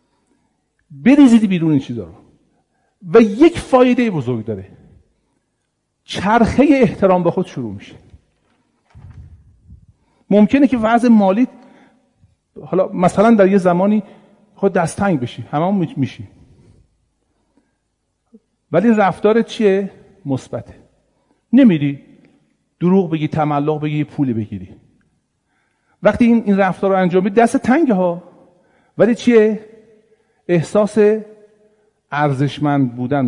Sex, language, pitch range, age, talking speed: male, Persian, 135-210 Hz, 50-69, 100 wpm